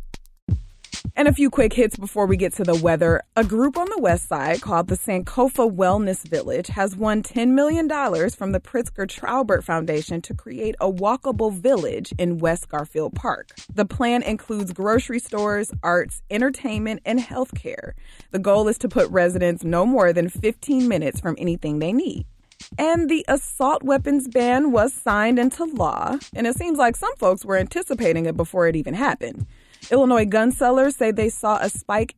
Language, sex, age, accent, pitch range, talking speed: English, female, 20-39, American, 175-245 Hz, 175 wpm